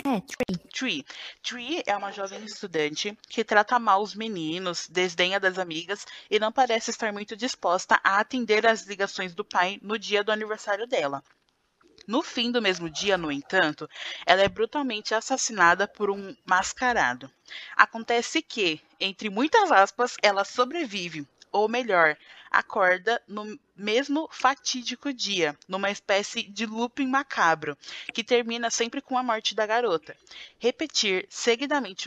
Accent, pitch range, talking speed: Brazilian, 185-250 Hz, 140 wpm